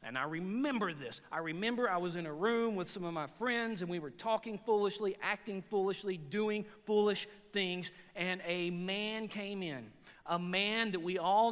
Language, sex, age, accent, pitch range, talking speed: English, male, 40-59, American, 165-210 Hz, 190 wpm